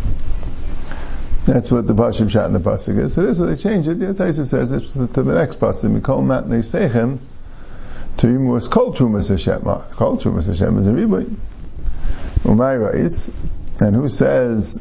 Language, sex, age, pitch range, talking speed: English, male, 50-69, 100-130 Hz, 180 wpm